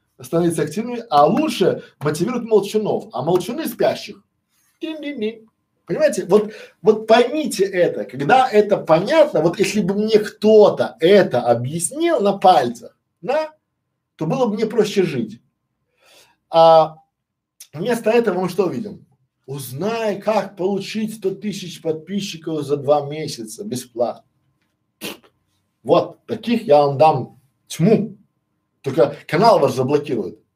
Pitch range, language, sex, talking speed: 160-220 Hz, Russian, male, 120 wpm